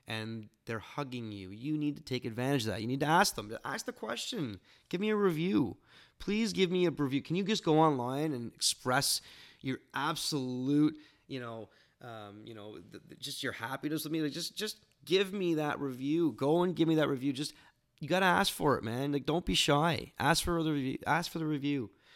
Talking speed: 220 wpm